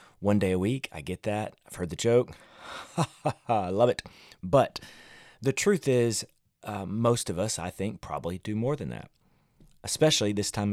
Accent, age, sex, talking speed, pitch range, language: American, 30-49, male, 180 wpm, 95-120 Hz, English